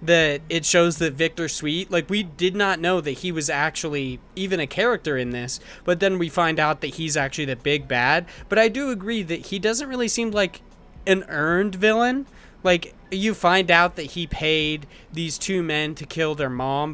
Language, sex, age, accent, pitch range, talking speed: English, male, 20-39, American, 150-190 Hz, 205 wpm